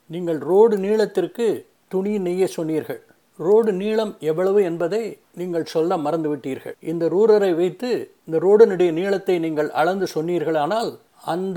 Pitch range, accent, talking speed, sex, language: 155-190 Hz, native, 130 wpm, male, Tamil